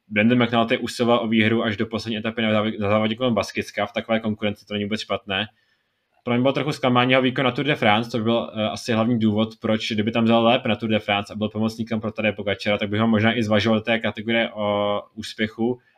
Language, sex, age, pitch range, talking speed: Czech, male, 20-39, 105-115 Hz, 230 wpm